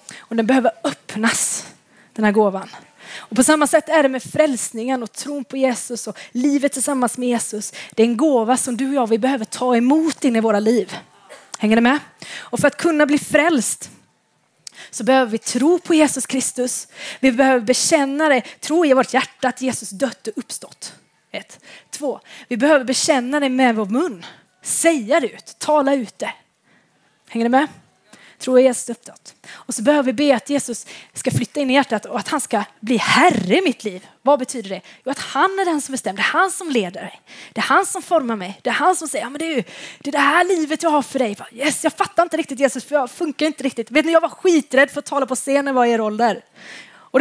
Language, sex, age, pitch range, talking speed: Swedish, female, 20-39, 240-310 Hz, 225 wpm